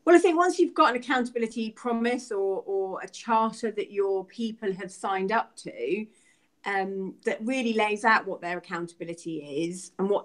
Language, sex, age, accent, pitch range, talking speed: English, female, 30-49, British, 170-225 Hz, 180 wpm